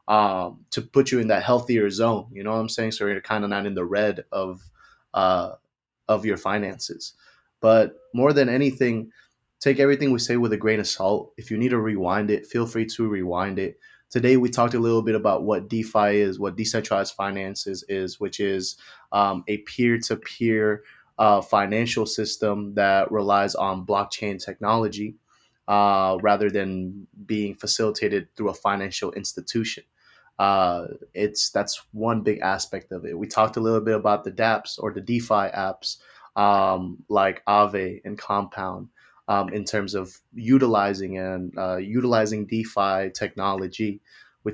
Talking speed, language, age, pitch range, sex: 165 wpm, English, 20-39, 100-110 Hz, male